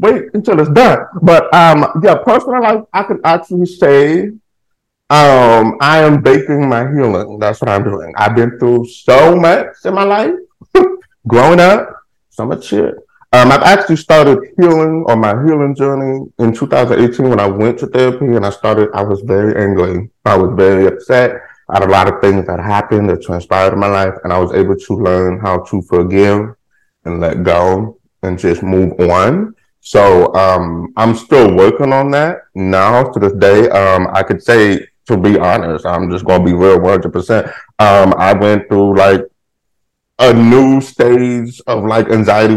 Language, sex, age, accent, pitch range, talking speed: English, male, 30-49, American, 95-135 Hz, 180 wpm